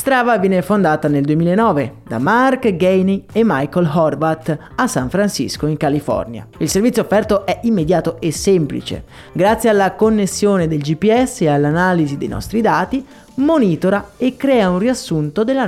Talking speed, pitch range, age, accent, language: 150 wpm, 165-235 Hz, 30-49, native, Italian